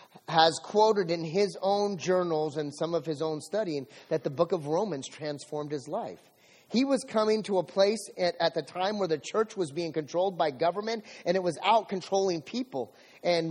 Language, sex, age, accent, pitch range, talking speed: English, male, 30-49, American, 150-195 Hz, 200 wpm